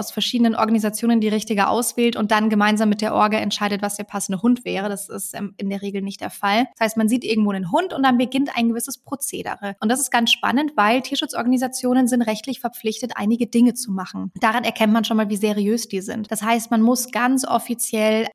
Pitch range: 215-250 Hz